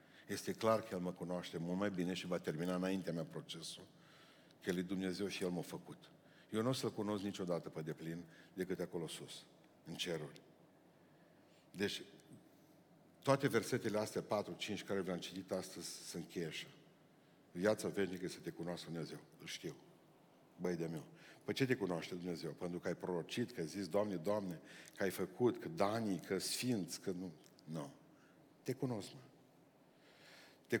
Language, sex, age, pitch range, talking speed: Romanian, male, 50-69, 90-110 Hz, 170 wpm